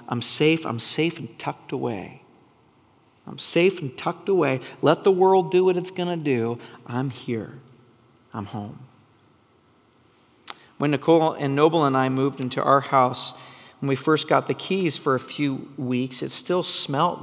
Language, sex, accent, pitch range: English, male, American, 135-215 Hz